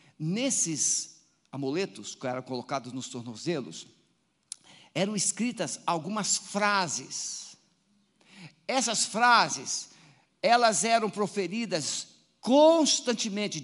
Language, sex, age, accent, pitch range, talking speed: Portuguese, male, 50-69, Brazilian, 215-275 Hz, 75 wpm